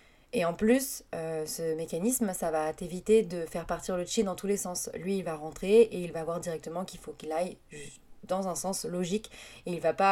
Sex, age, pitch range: female, 20-39, 170-200 Hz